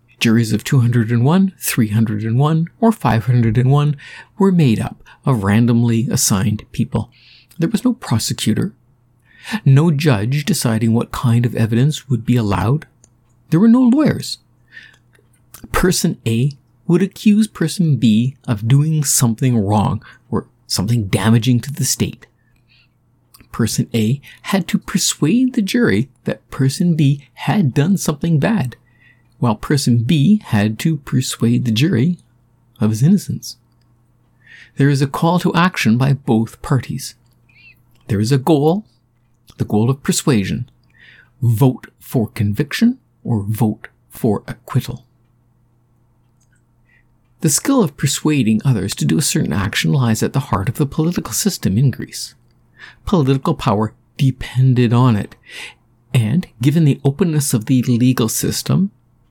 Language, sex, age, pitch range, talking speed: English, male, 50-69, 120-150 Hz, 130 wpm